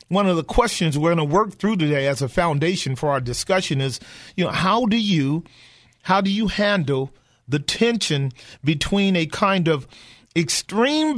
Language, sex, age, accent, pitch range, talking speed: English, male, 40-59, American, 135-195 Hz, 175 wpm